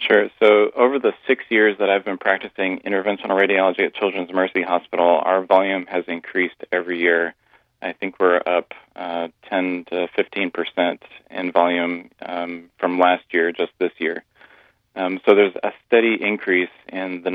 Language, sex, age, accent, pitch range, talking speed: English, male, 30-49, American, 85-95 Hz, 165 wpm